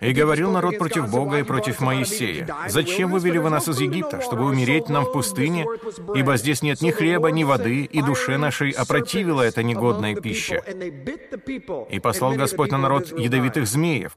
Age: 30-49